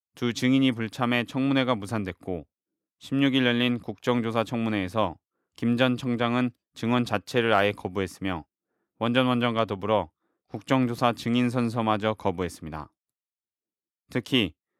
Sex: male